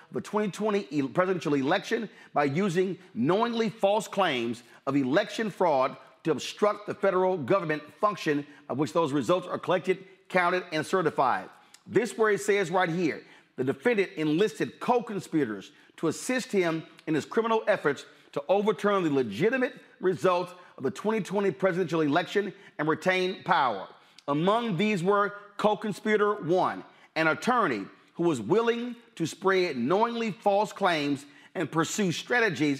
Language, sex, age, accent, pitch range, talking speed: English, male, 40-59, American, 160-210 Hz, 145 wpm